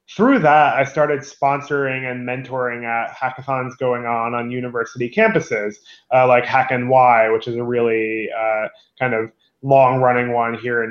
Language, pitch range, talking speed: English, 120-135 Hz, 155 wpm